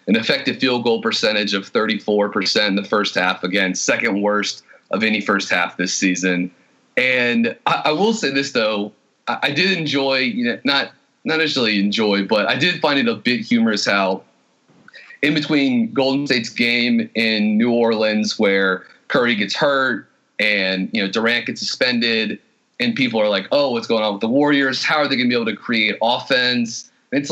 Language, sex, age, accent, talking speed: English, male, 30-49, American, 190 wpm